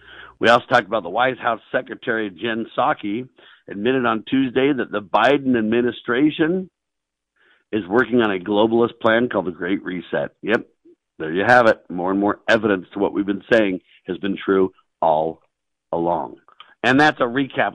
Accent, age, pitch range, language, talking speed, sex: American, 50-69, 100-125 Hz, English, 170 wpm, male